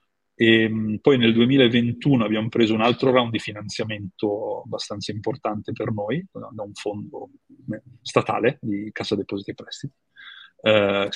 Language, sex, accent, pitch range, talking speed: Italian, male, native, 105-115 Hz, 140 wpm